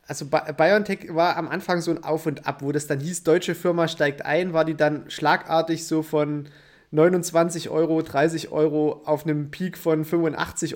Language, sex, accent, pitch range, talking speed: German, male, German, 145-165 Hz, 185 wpm